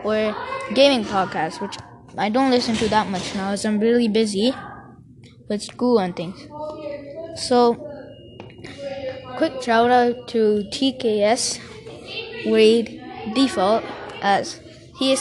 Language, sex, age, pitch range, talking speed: English, female, 20-39, 210-300 Hz, 120 wpm